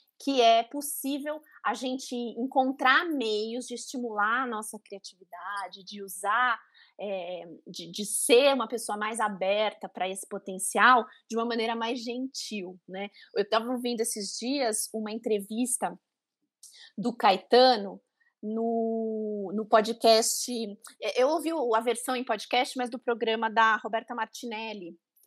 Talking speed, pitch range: 130 wpm, 215-265 Hz